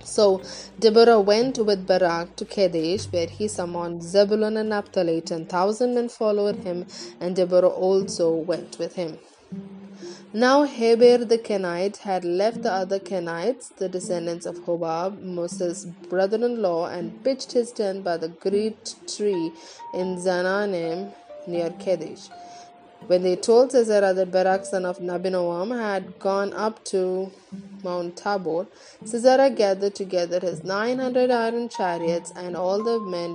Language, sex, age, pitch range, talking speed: English, female, 20-39, 175-215 Hz, 140 wpm